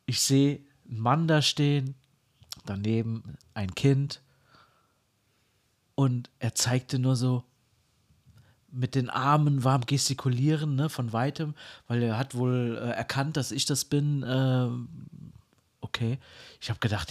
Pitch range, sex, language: 120-155 Hz, male, German